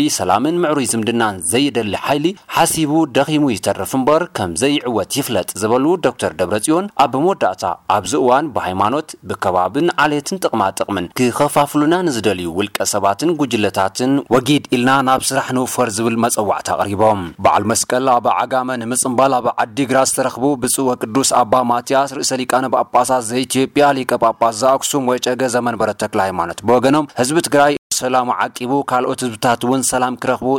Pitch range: 120-135 Hz